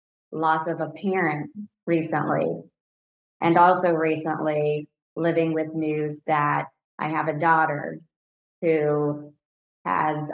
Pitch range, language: 150-170 Hz, English